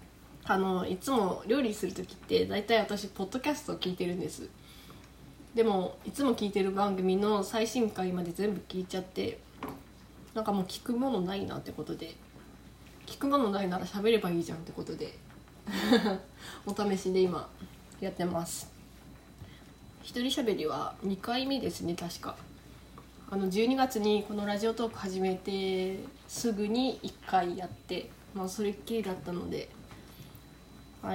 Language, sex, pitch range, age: Japanese, female, 185-225 Hz, 20-39